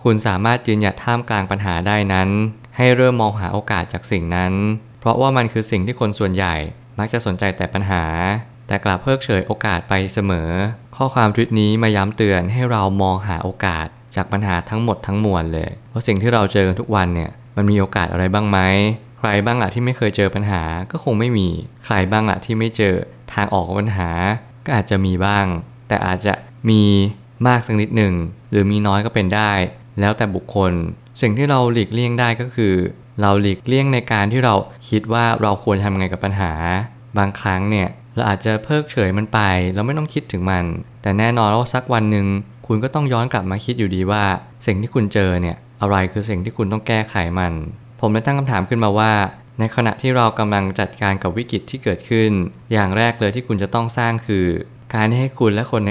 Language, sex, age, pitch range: Thai, male, 20-39, 95-115 Hz